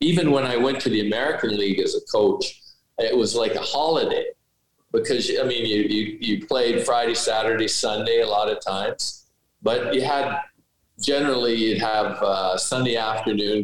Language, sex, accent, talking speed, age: English, male, American, 165 wpm, 50-69